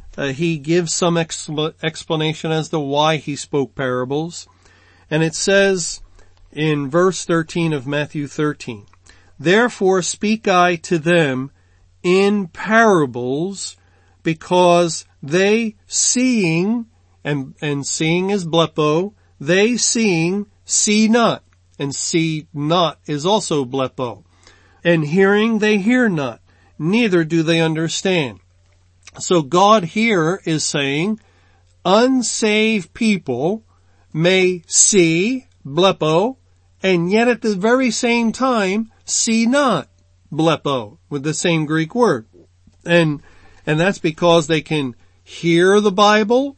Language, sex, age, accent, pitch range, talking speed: English, male, 50-69, American, 140-200 Hz, 115 wpm